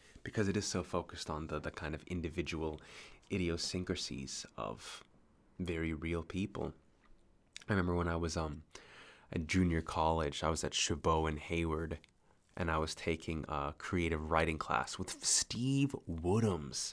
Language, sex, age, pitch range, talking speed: English, male, 20-39, 80-100 Hz, 150 wpm